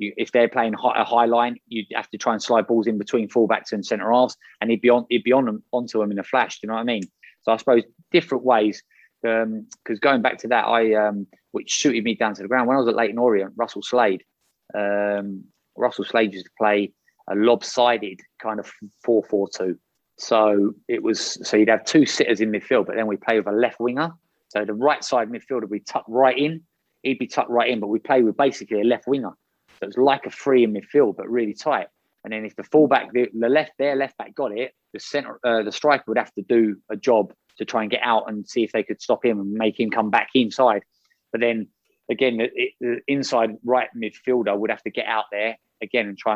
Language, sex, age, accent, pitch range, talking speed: English, male, 20-39, British, 105-120 Hz, 240 wpm